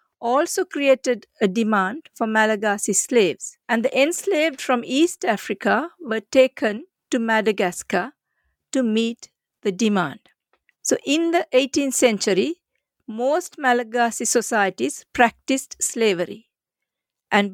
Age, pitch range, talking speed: 50-69, 225-285 Hz, 110 wpm